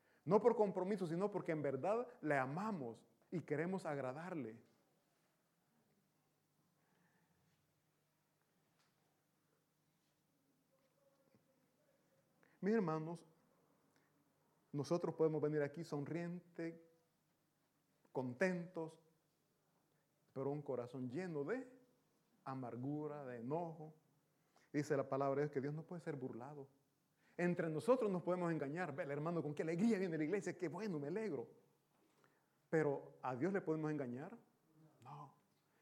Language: Italian